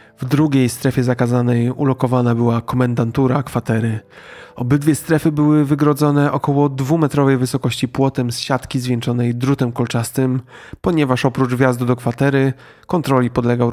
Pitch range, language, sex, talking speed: 120-135 Hz, Polish, male, 120 wpm